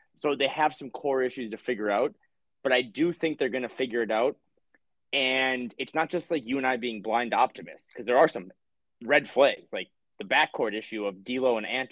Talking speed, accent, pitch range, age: 220 wpm, American, 120-150 Hz, 30-49